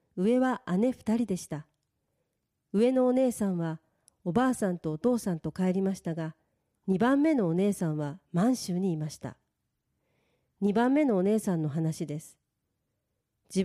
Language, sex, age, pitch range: Japanese, female, 40-59, 165-235 Hz